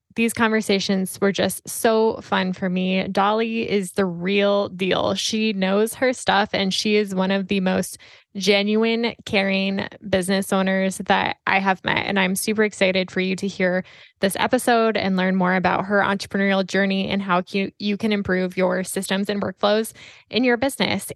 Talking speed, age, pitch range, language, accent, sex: 175 wpm, 10-29, 195-215 Hz, English, American, female